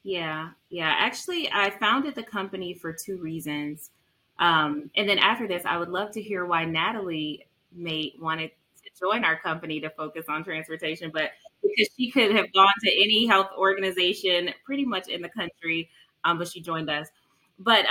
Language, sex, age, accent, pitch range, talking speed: English, female, 20-39, American, 155-190 Hz, 180 wpm